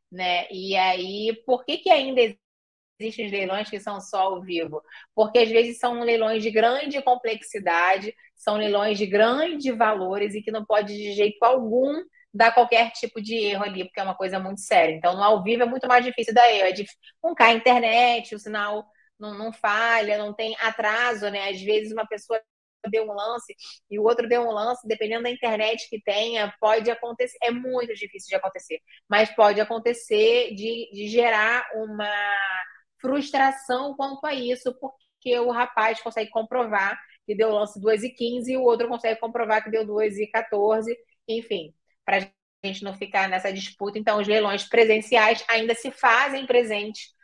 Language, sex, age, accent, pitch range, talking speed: Portuguese, female, 30-49, Brazilian, 205-240 Hz, 185 wpm